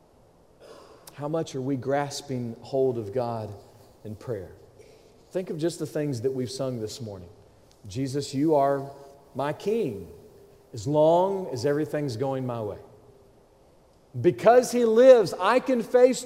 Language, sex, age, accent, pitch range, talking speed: English, male, 40-59, American, 130-180 Hz, 140 wpm